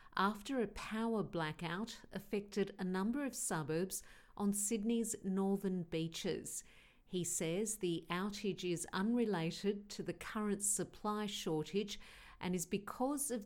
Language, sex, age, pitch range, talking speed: English, female, 50-69, 170-215 Hz, 125 wpm